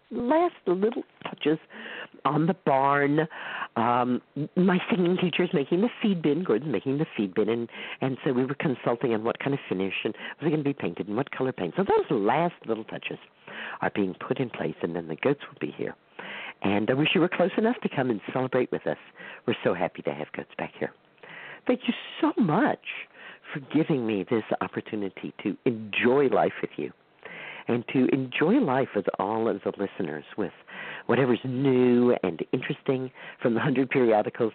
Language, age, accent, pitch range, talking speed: English, 50-69, American, 105-155 Hz, 195 wpm